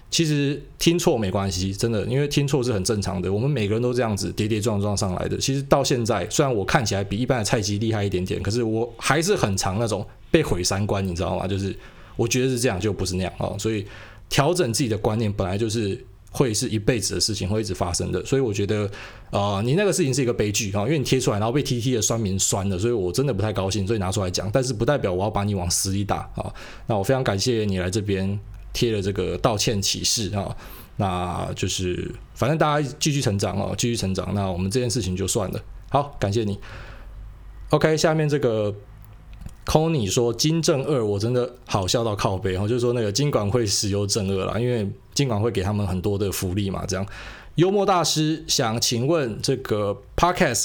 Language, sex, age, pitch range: Chinese, male, 20-39, 100-135 Hz